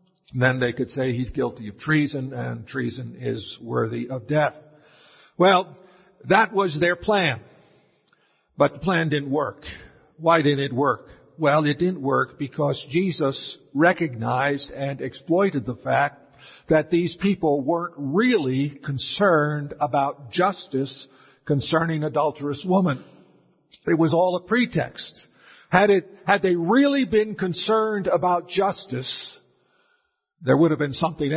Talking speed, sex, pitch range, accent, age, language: 135 wpm, male, 145-195 Hz, American, 50-69, English